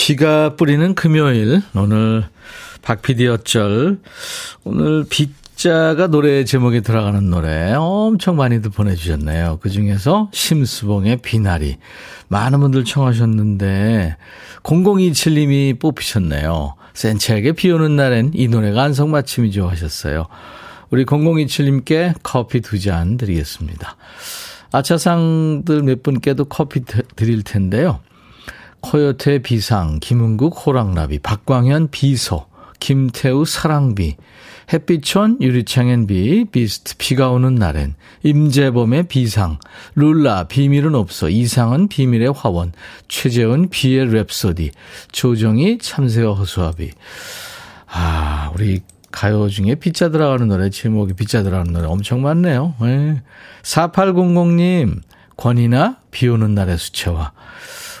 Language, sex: Korean, male